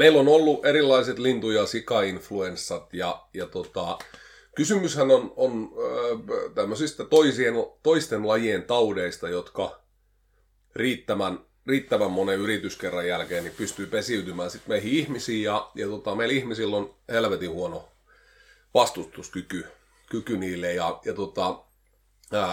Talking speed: 120 wpm